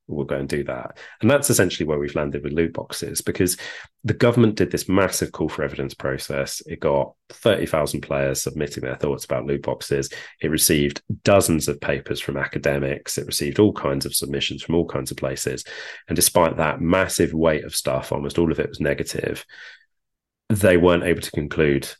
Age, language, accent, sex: 30-49, English, British, male